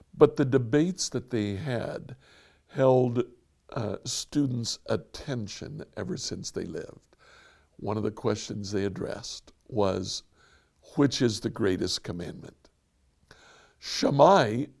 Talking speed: 110 wpm